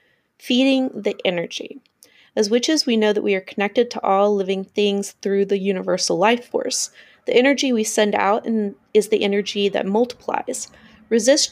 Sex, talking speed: female, 160 wpm